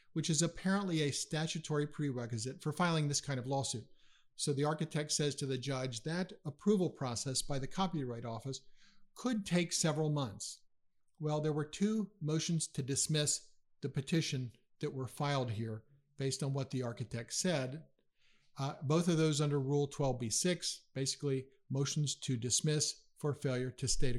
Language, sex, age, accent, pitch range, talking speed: English, male, 50-69, American, 130-160 Hz, 160 wpm